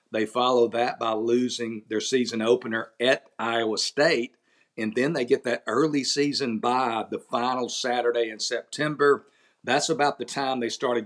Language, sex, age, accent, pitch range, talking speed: English, male, 50-69, American, 115-125 Hz, 165 wpm